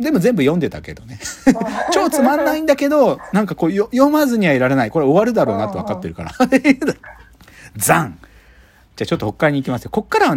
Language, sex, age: Japanese, male, 40-59